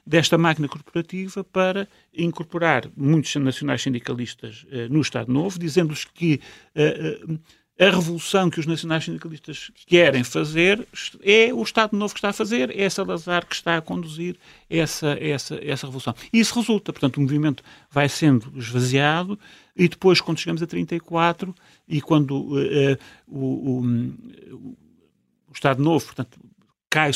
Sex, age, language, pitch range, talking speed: male, 40-59, Portuguese, 135-170 Hz, 150 wpm